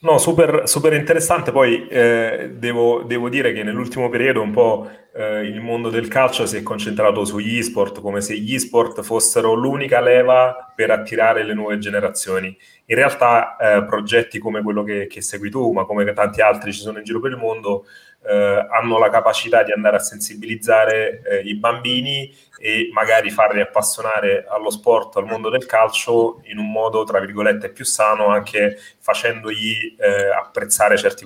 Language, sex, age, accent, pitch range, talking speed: Italian, male, 30-49, native, 105-165 Hz, 175 wpm